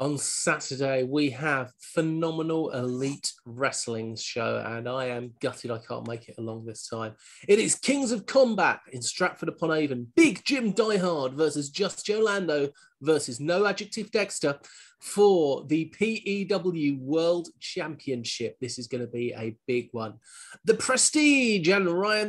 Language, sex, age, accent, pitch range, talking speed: English, male, 30-49, British, 135-215 Hz, 145 wpm